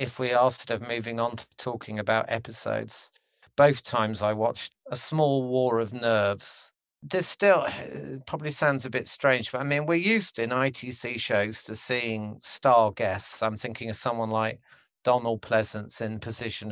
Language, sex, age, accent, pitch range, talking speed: English, male, 50-69, British, 110-135 Hz, 170 wpm